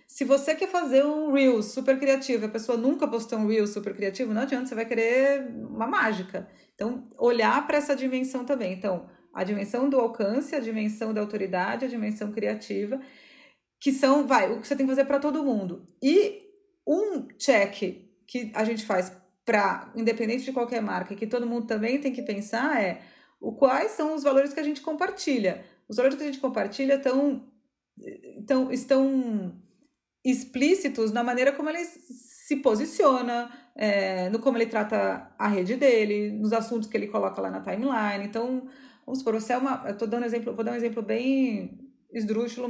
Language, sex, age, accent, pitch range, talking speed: Portuguese, female, 30-49, Brazilian, 215-275 Hz, 175 wpm